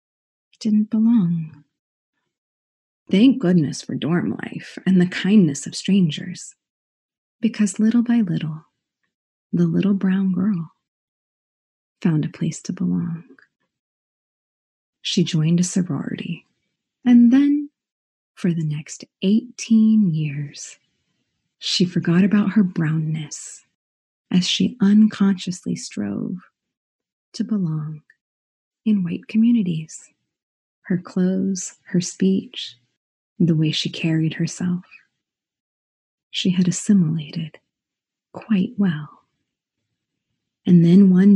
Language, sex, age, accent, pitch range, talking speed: English, female, 30-49, American, 165-205 Hz, 95 wpm